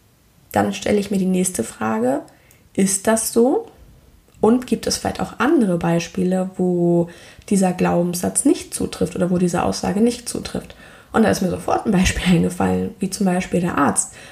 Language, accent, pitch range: German, German, 180-215 Hz